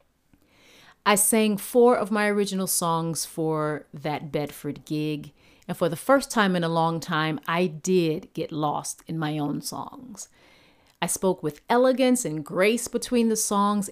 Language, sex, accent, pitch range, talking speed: Ukrainian, female, American, 155-220 Hz, 160 wpm